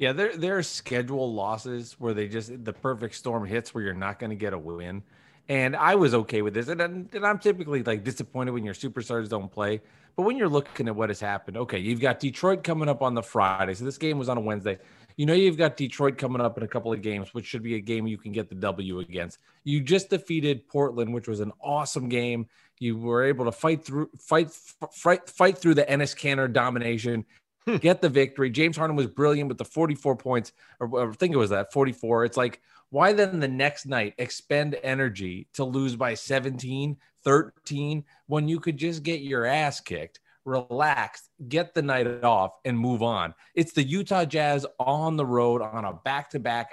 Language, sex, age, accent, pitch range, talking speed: English, male, 30-49, American, 115-150 Hz, 215 wpm